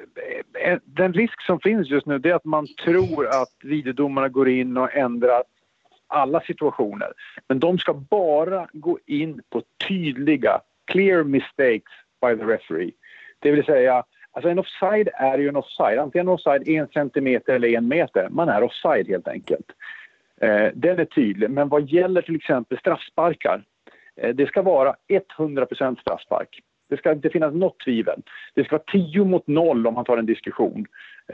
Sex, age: male, 50-69